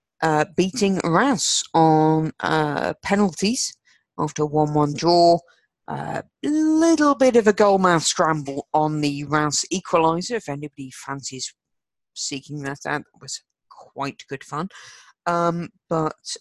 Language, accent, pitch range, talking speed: English, British, 145-175 Hz, 125 wpm